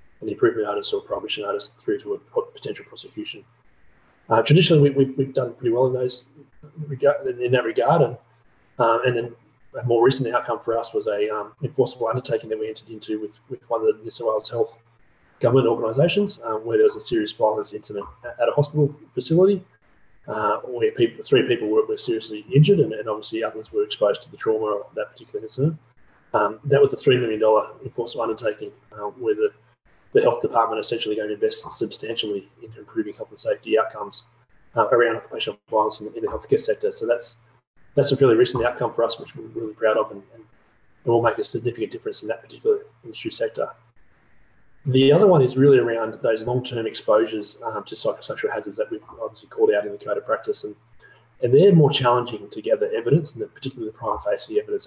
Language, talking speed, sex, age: English, 210 wpm, male, 30-49